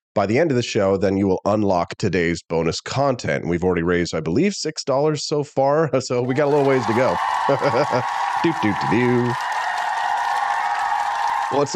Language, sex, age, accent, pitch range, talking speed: English, male, 30-49, American, 100-140 Hz, 155 wpm